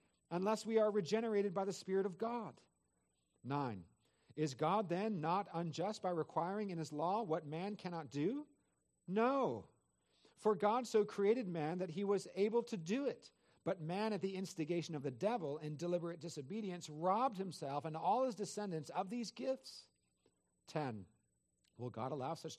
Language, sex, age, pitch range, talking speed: English, male, 50-69, 130-185 Hz, 165 wpm